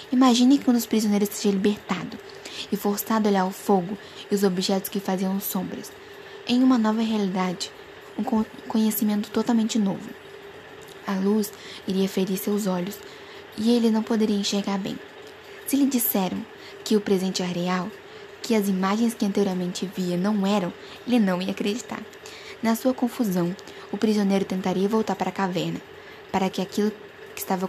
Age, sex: 10-29, female